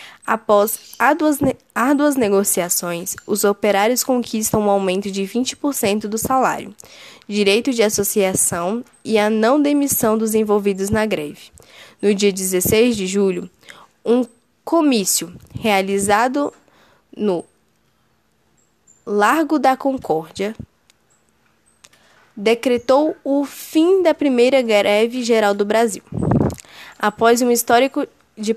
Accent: Brazilian